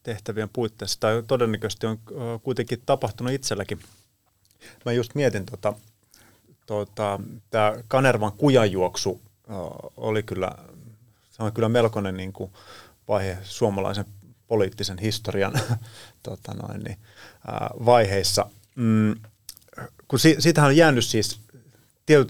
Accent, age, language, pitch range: native, 30-49, Finnish, 100-115 Hz